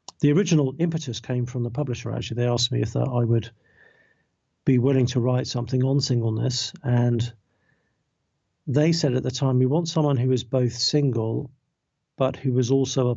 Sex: male